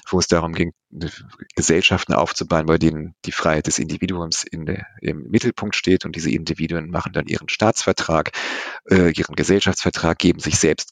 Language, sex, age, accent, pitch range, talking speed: German, male, 40-59, German, 90-110 Hz, 155 wpm